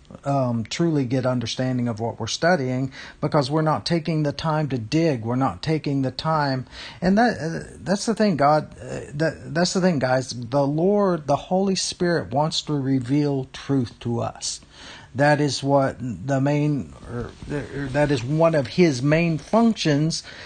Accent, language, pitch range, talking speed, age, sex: American, English, 135-180 Hz, 175 wpm, 50-69, male